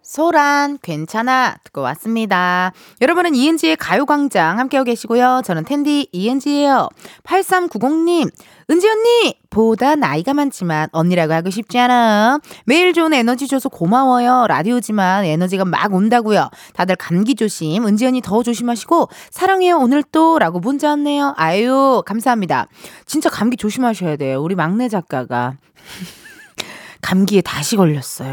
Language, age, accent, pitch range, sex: Korean, 20-39, native, 190-285 Hz, female